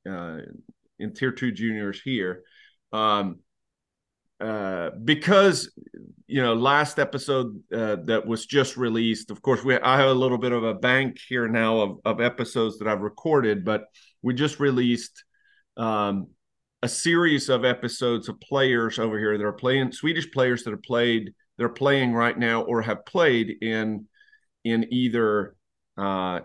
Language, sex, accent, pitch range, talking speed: English, male, American, 110-135 Hz, 160 wpm